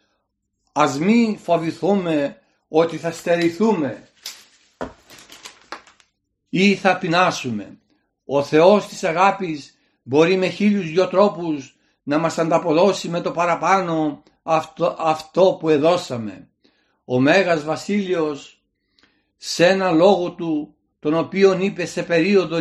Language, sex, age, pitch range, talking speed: Greek, male, 60-79, 160-195 Hz, 105 wpm